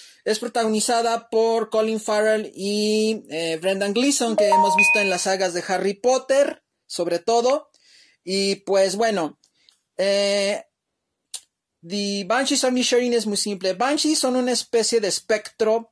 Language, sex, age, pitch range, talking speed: Spanish, male, 30-49, 190-235 Hz, 140 wpm